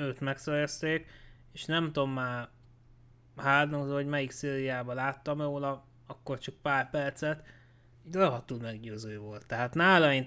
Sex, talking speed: male, 135 wpm